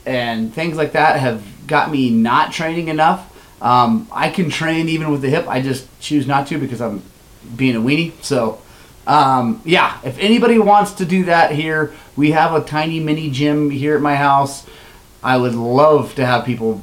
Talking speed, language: 195 wpm, English